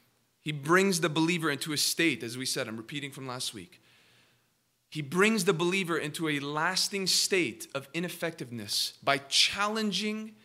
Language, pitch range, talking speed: English, 140-185 Hz, 155 wpm